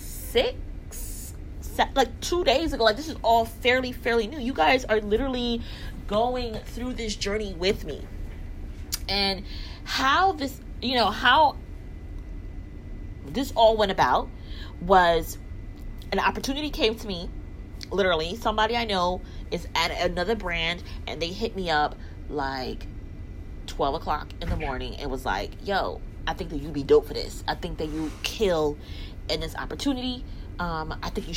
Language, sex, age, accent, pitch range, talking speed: English, female, 20-39, American, 150-230 Hz, 155 wpm